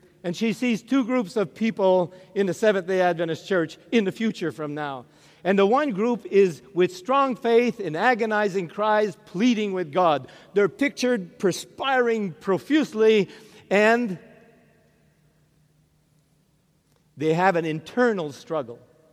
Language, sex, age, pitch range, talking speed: English, male, 50-69, 170-230 Hz, 130 wpm